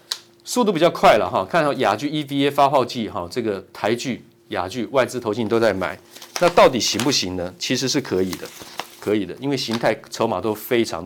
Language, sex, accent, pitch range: Chinese, male, native, 95-130 Hz